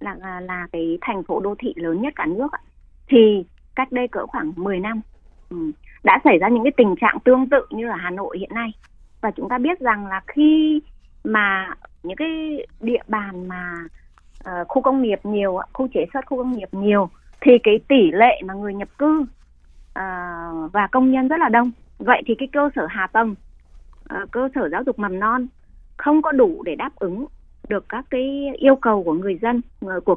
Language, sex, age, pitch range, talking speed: Vietnamese, female, 20-39, 205-280 Hz, 205 wpm